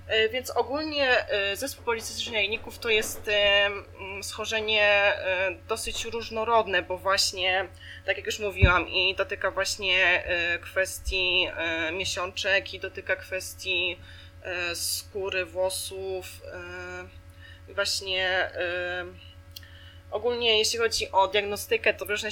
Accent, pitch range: native, 165-200 Hz